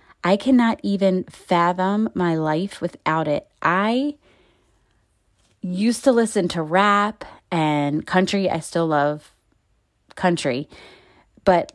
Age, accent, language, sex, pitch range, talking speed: 30-49, American, English, female, 155-200 Hz, 105 wpm